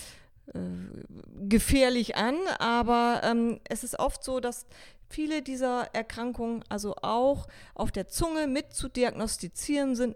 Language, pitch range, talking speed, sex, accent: German, 210-270 Hz, 130 wpm, female, German